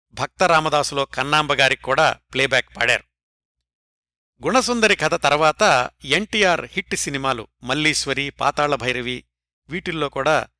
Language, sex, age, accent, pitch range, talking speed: Telugu, male, 60-79, native, 125-170 Hz, 95 wpm